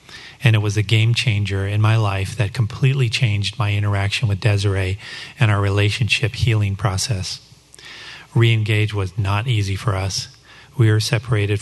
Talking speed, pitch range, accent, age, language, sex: 155 wpm, 100-125 Hz, American, 40-59, English, male